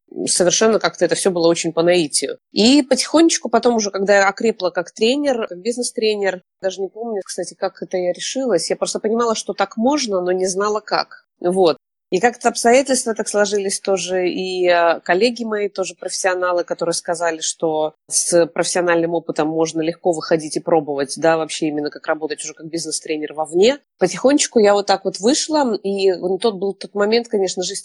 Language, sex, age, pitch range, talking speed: Russian, female, 20-39, 170-215 Hz, 175 wpm